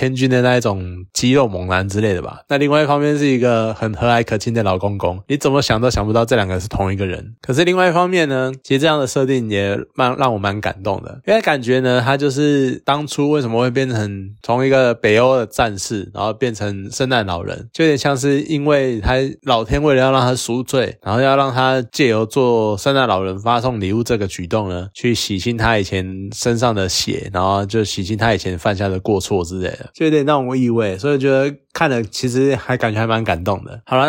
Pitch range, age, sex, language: 105-135 Hz, 20-39, male, Chinese